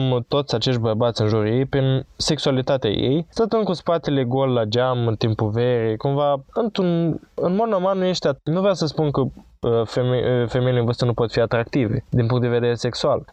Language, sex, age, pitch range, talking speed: Romanian, male, 20-39, 125-160 Hz, 195 wpm